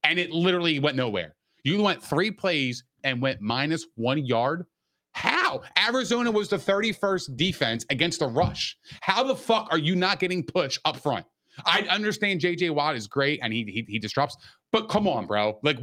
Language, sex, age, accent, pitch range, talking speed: English, male, 30-49, American, 130-185 Hz, 190 wpm